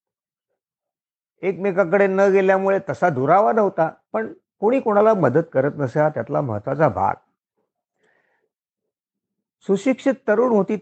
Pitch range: 140-210 Hz